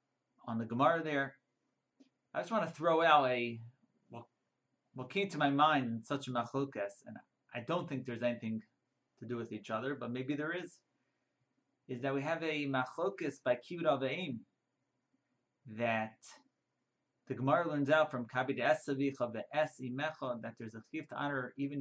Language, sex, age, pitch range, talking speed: English, male, 30-49, 120-145 Hz, 170 wpm